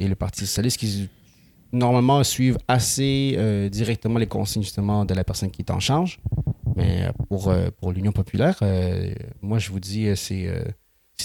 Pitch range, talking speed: 100-130 Hz, 180 wpm